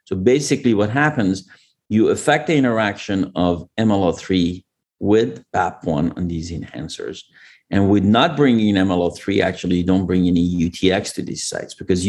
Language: English